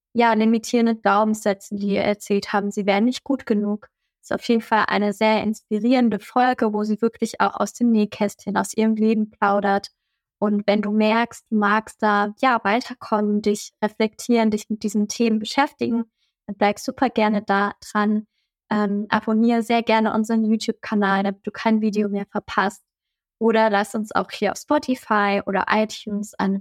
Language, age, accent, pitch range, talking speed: German, 20-39, German, 200-225 Hz, 170 wpm